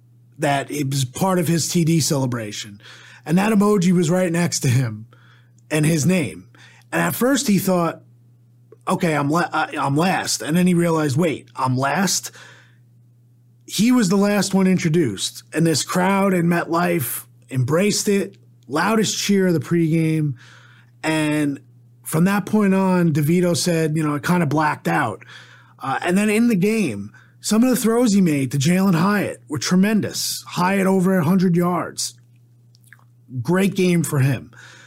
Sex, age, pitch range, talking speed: male, 30-49, 125-185 Hz, 160 wpm